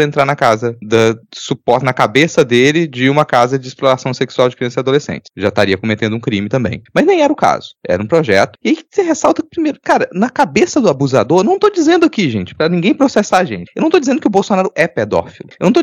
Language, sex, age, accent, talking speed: Portuguese, male, 20-39, Brazilian, 245 wpm